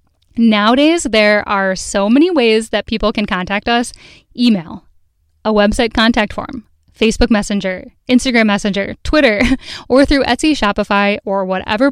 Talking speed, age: 135 wpm, 10-29